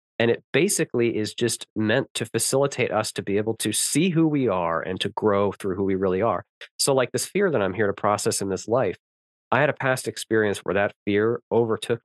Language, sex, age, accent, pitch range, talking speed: English, male, 30-49, American, 95-130 Hz, 230 wpm